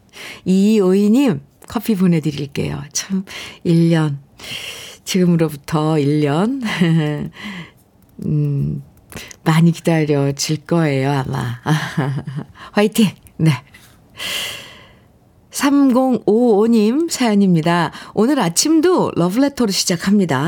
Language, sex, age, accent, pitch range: Korean, female, 50-69, native, 155-215 Hz